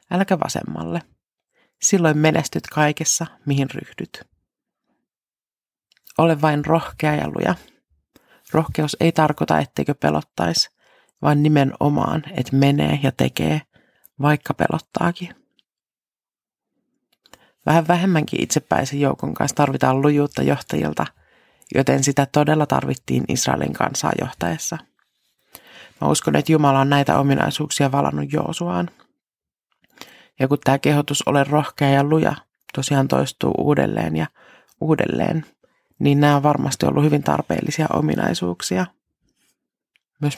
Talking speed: 105 wpm